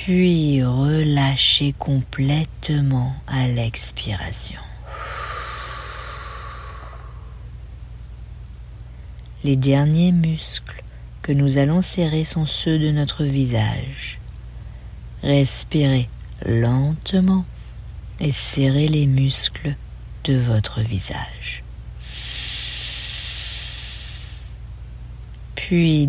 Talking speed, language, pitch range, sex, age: 60 wpm, English, 125-170 Hz, female, 40-59